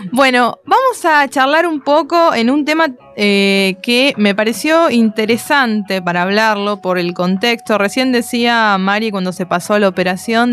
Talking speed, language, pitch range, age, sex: 160 wpm, Spanish, 195-255 Hz, 20-39, female